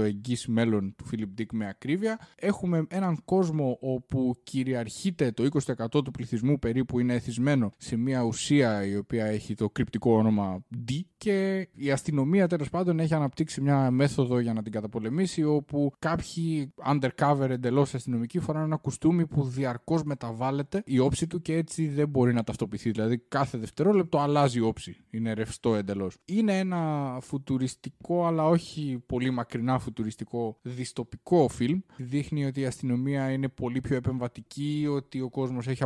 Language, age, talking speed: Greek, 20-39, 155 wpm